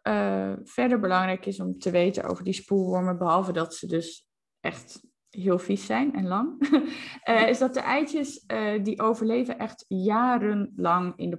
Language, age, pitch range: Dutch, 20-39, 175-250 Hz